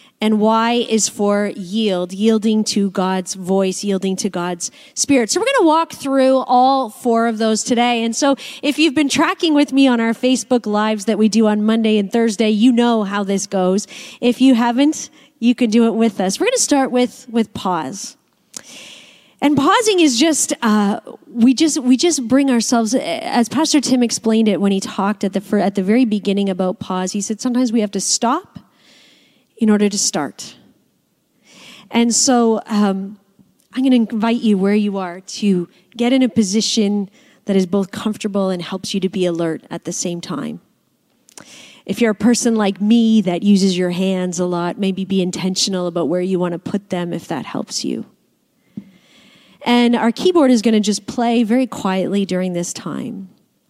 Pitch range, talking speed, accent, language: 195-255 Hz, 190 wpm, American, English